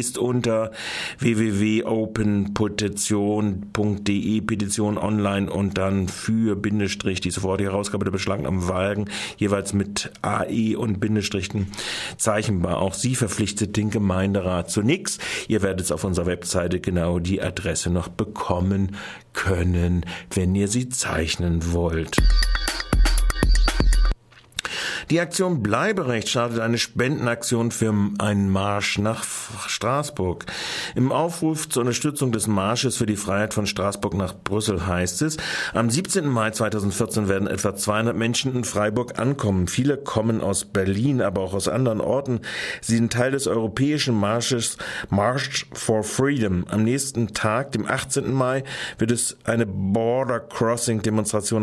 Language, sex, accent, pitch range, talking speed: German, male, German, 100-120 Hz, 130 wpm